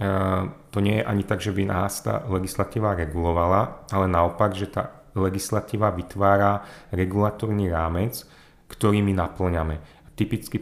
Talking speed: 125 wpm